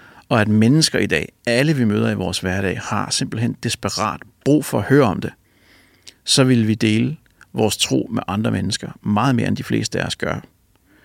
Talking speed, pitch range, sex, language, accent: 195 wpm, 105-130 Hz, male, English, Danish